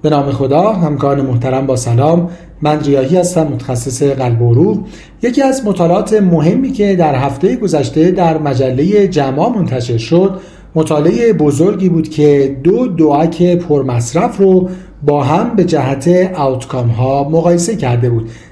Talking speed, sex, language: 145 wpm, male, Persian